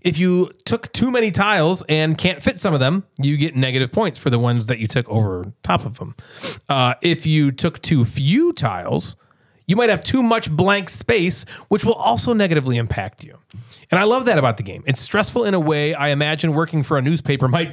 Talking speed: 215 wpm